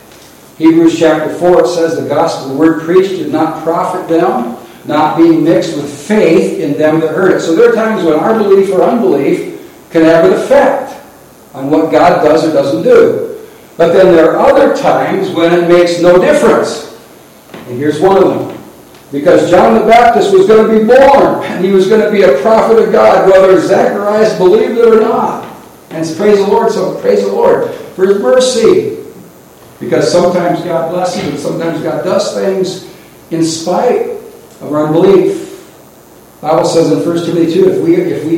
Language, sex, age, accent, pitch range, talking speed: English, male, 60-79, American, 160-220 Hz, 190 wpm